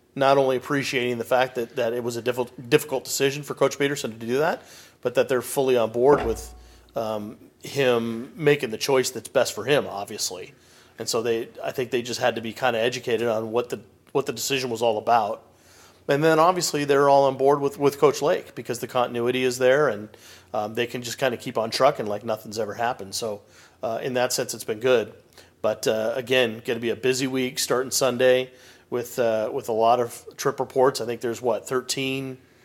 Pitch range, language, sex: 115-130 Hz, English, male